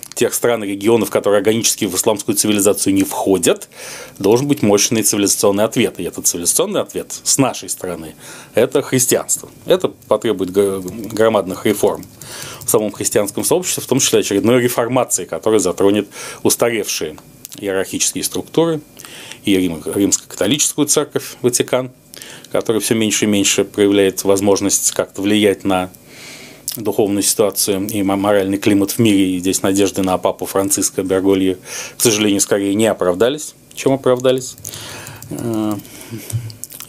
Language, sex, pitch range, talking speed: Russian, male, 95-115 Hz, 125 wpm